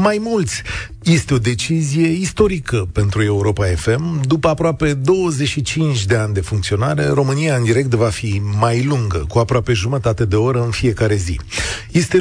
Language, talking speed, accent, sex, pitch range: Romanian, 155 wpm, native, male, 105-145 Hz